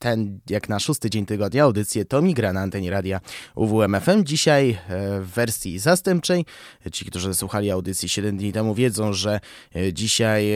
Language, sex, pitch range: Polish, male, 105-140 Hz